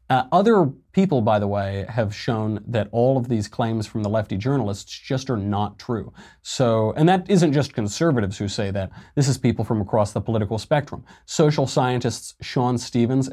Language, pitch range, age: English, 105-135 Hz, 30-49